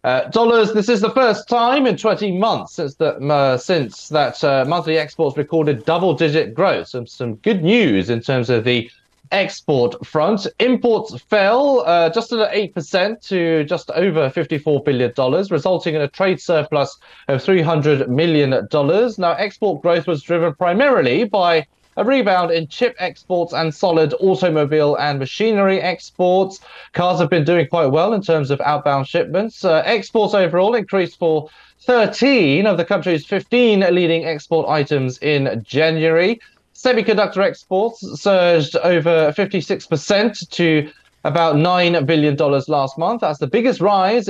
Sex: male